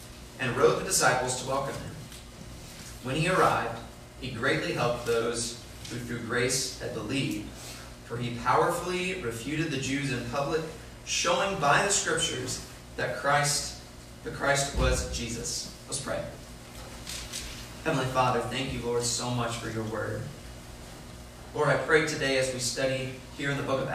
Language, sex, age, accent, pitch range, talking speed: English, male, 30-49, American, 110-130 Hz, 150 wpm